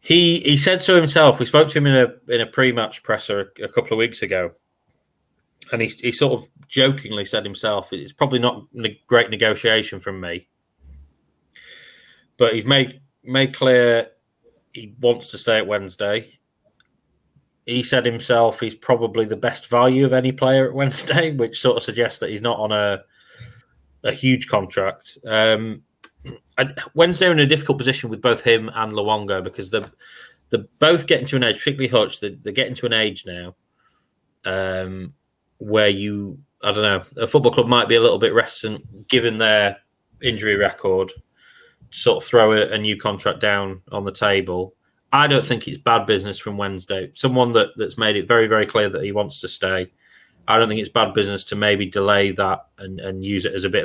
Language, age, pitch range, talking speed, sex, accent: English, 20-39, 100-130 Hz, 190 wpm, male, British